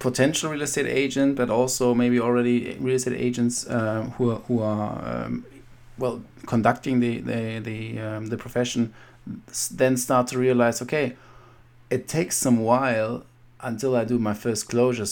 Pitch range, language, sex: 110-125 Hz, English, male